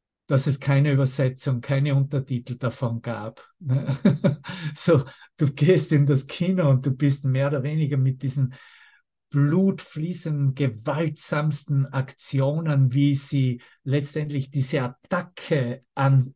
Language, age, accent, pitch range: German, 50-69, Swiss, 130-150 Hz